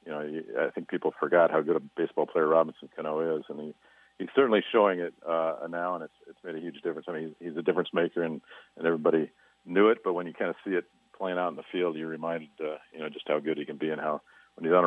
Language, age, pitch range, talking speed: English, 50-69, 80-90 Hz, 275 wpm